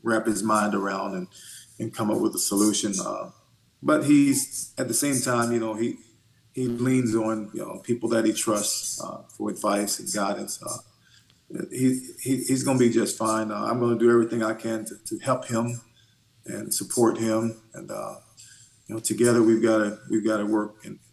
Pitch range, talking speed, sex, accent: 110-120 Hz, 205 wpm, male, American